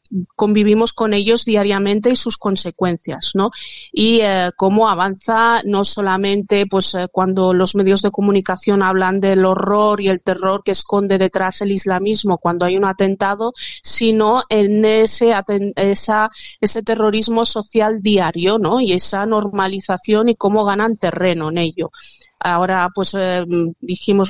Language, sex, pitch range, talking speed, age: Spanish, female, 195-215 Hz, 145 wpm, 30-49